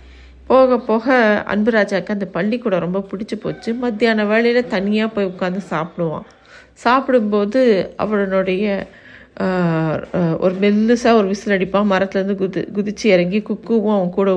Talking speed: 115 wpm